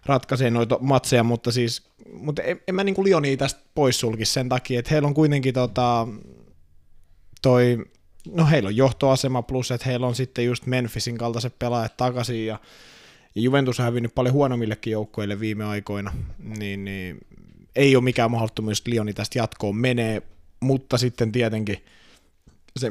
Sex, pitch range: male, 105-130 Hz